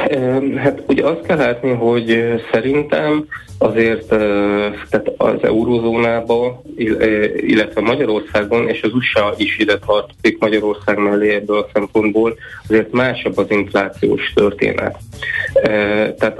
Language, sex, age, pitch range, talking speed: Hungarian, male, 30-49, 100-110 Hz, 110 wpm